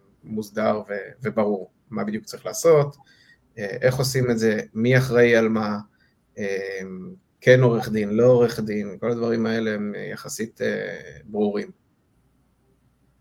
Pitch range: 110-125 Hz